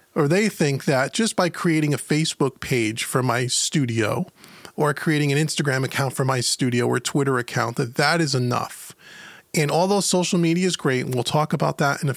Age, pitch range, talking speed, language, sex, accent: 30-49, 135-165 Hz, 200 wpm, English, male, American